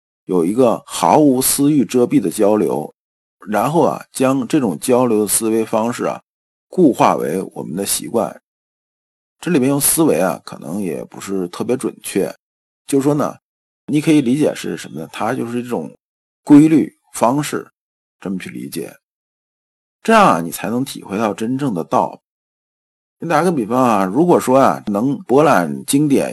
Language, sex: Chinese, male